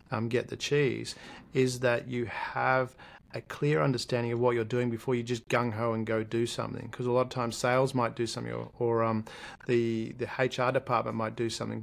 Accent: Australian